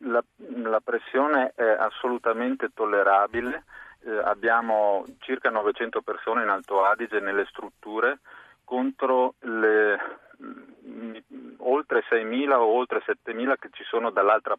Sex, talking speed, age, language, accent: male, 110 wpm, 40-59, Italian, native